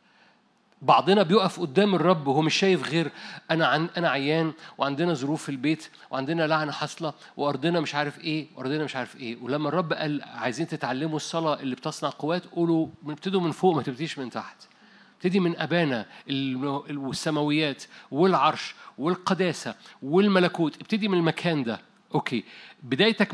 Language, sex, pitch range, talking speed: Arabic, male, 155-205 Hz, 145 wpm